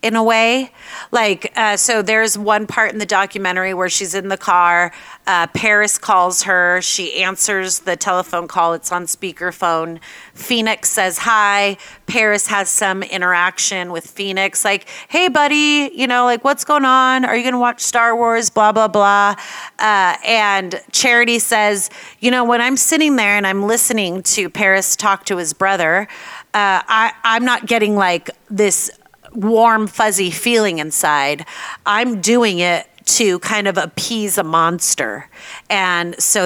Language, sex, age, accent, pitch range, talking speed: English, female, 30-49, American, 180-225 Hz, 160 wpm